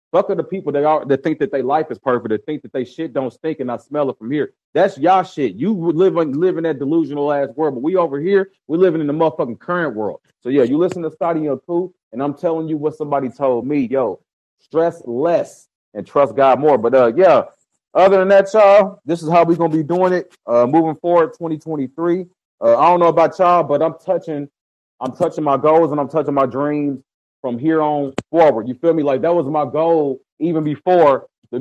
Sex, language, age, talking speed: male, English, 30-49, 230 wpm